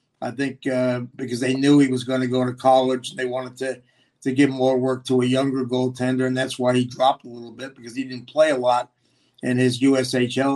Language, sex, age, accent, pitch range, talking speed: English, male, 50-69, American, 125-150 Hz, 240 wpm